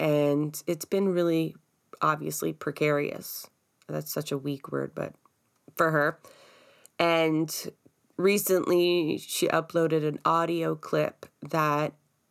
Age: 20-39